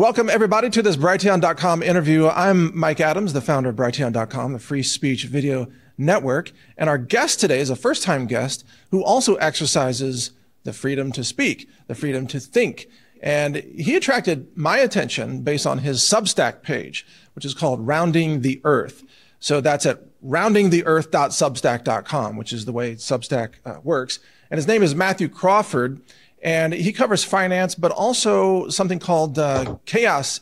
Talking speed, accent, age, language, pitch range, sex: 160 wpm, American, 40-59, English, 135-185 Hz, male